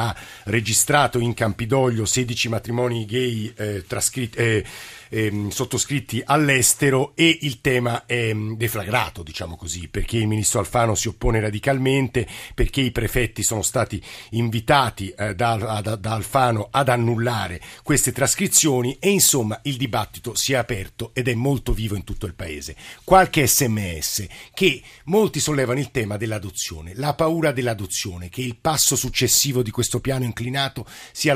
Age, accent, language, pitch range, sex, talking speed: 50-69, native, Italian, 115-140 Hz, male, 150 wpm